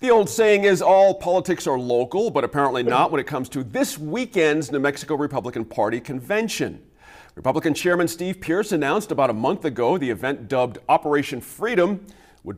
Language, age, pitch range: English, 40-59, 135-210 Hz